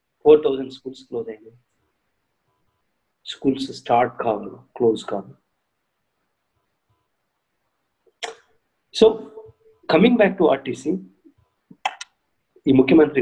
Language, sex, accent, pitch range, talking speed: Telugu, male, native, 135-190 Hz, 70 wpm